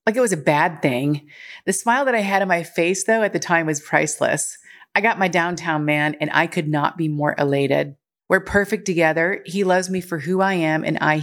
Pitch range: 155-200 Hz